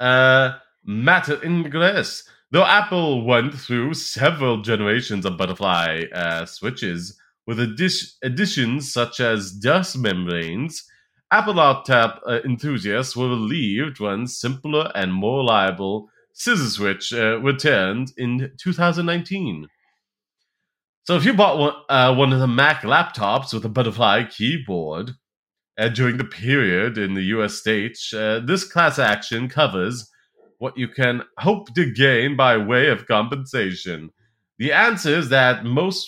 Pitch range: 110-140 Hz